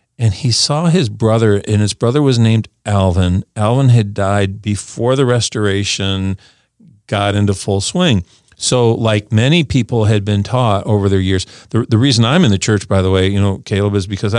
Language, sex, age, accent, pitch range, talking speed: English, male, 50-69, American, 100-125 Hz, 190 wpm